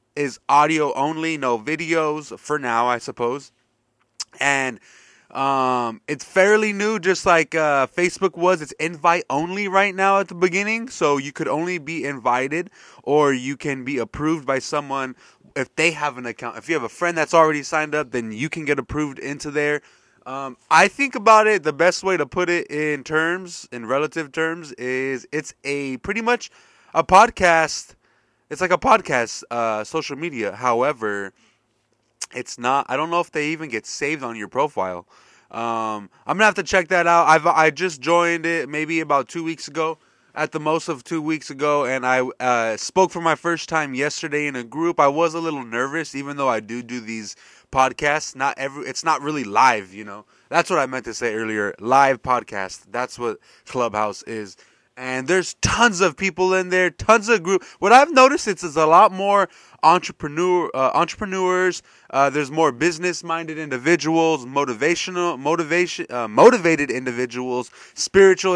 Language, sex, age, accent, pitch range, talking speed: English, male, 20-39, American, 130-175 Hz, 180 wpm